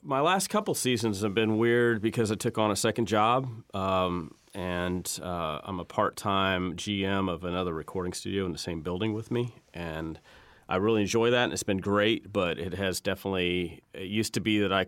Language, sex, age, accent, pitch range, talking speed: English, male, 30-49, American, 85-110 Hz, 200 wpm